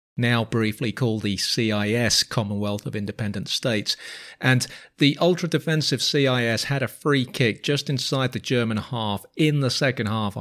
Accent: British